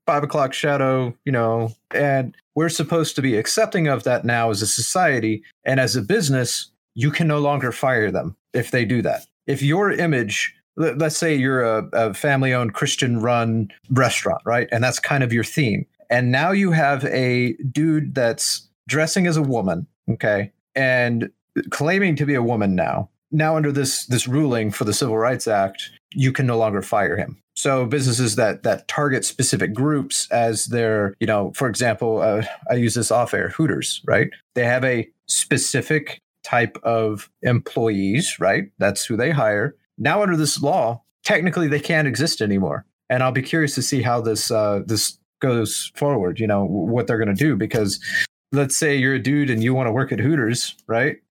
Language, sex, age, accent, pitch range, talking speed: English, male, 30-49, American, 115-145 Hz, 185 wpm